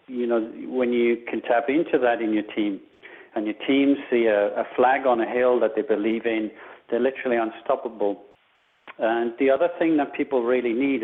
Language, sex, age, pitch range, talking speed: English, male, 40-59, 115-135 Hz, 195 wpm